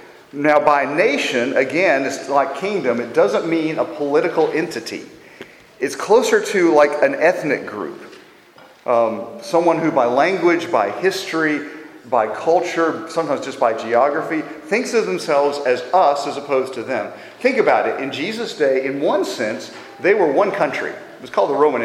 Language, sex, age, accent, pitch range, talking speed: English, male, 40-59, American, 120-165 Hz, 165 wpm